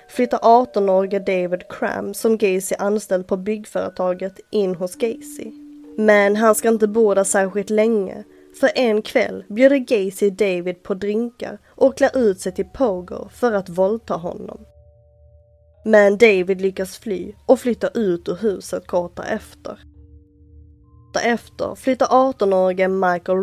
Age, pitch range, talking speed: 20-39, 185-225 Hz, 135 wpm